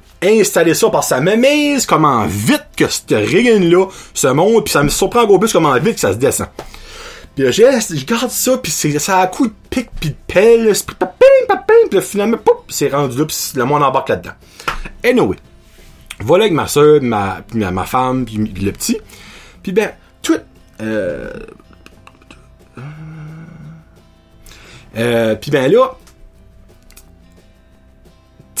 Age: 30-49